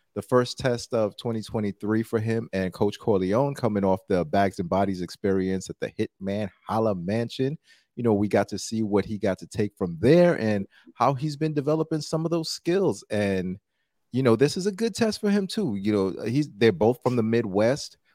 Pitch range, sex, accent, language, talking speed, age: 100-130 Hz, male, American, English, 210 wpm, 30-49